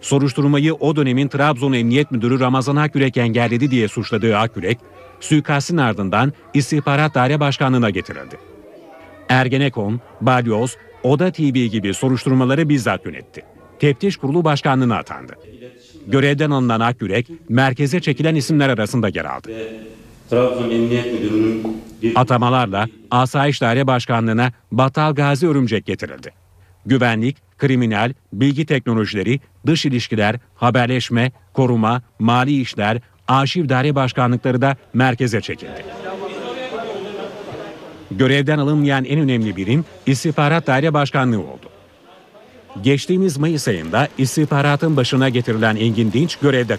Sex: male